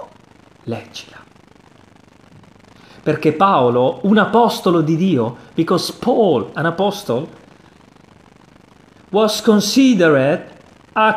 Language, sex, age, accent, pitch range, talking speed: Italian, male, 30-49, native, 130-215 Hz, 75 wpm